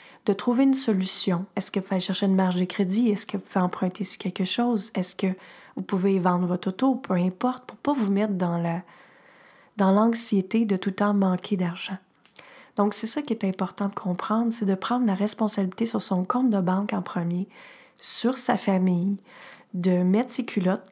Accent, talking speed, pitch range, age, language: Canadian, 205 wpm, 185-220 Hz, 30-49, French